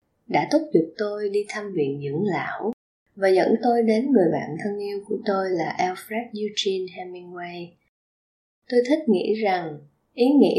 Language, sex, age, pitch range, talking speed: Vietnamese, female, 20-39, 180-235 Hz, 165 wpm